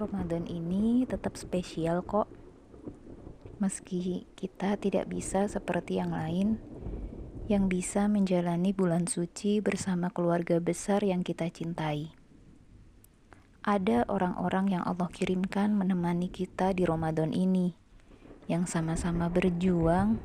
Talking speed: 105 wpm